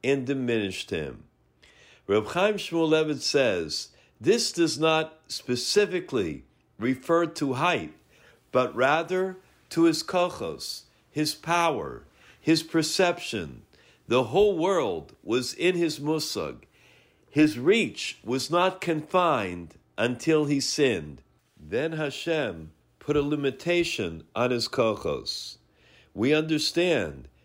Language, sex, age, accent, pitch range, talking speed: English, male, 50-69, American, 125-170 Hz, 105 wpm